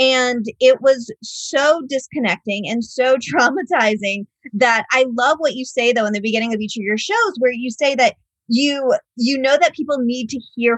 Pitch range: 215-275 Hz